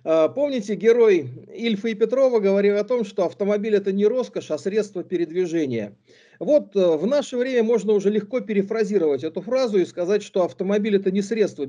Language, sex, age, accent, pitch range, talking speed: Russian, male, 50-69, native, 155-225 Hz, 170 wpm